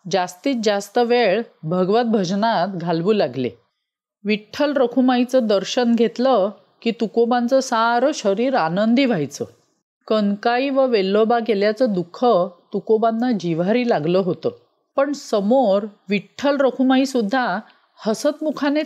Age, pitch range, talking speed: 40-59, 195-255 Hz, 100 wpm